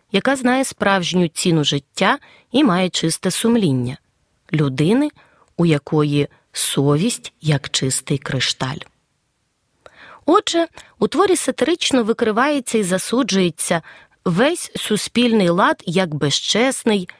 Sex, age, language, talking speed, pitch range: female, 30-49, Ukrainian, 100 wpm, 155-245 Hz